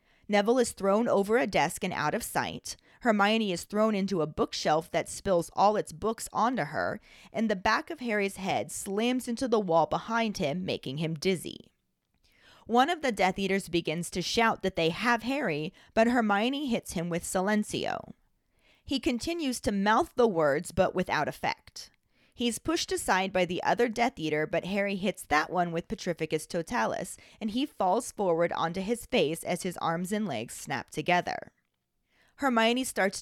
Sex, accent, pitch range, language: female, American, 175-240 Hz, English